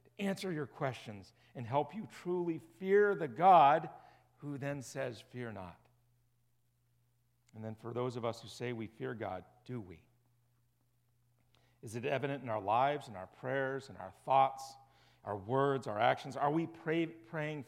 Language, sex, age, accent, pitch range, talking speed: English, male, 40-59, American, 120-160 Hz, 160 wpm